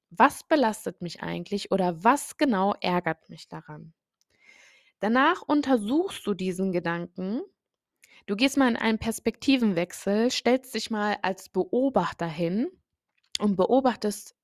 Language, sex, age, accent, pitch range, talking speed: German, female, 20-39, German, 190-255 Hz, 120 wpm